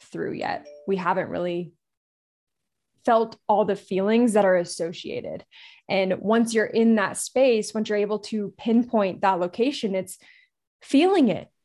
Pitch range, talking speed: 200-240 Hz, 145 wpm